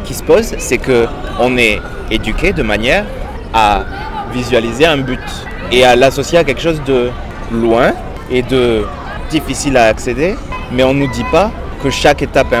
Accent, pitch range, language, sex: French, 110-140 Hz, French, male